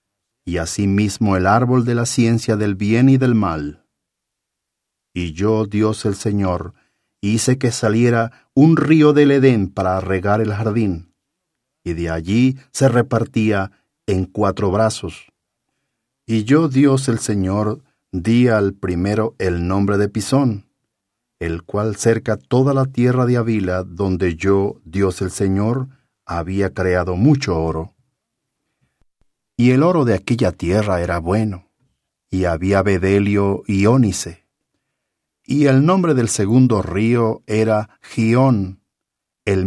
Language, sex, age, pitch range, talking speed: English, male, 50-69, 95-120 Hz, 130 wpm